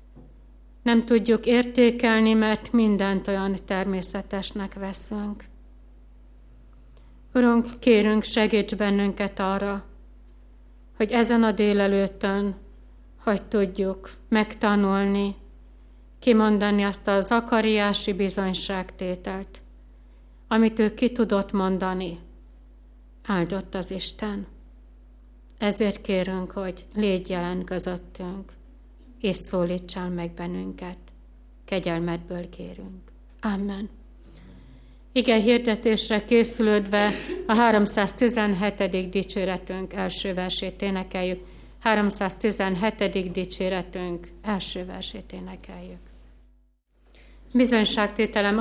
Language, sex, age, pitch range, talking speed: Hungarian, female, 60-79, 185-220 Hz, 75 wpm